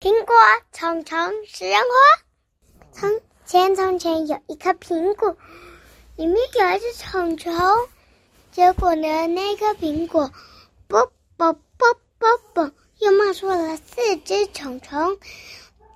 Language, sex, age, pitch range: Chinese, male, 20-39, 320-415 Hz